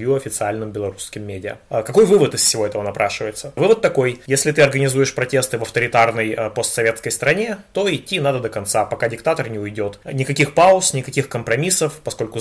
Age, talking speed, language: 20-39, 160 wpm, Russian